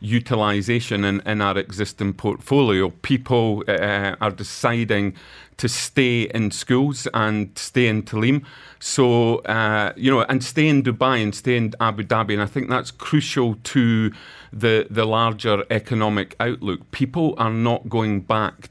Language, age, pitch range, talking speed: English, 40-59, 105-130 Hz, 150 wpm